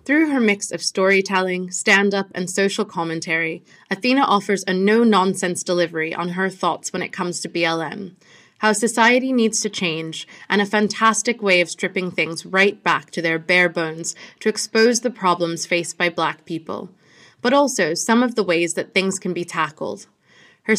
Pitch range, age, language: 170-215 Hz, 20-39, English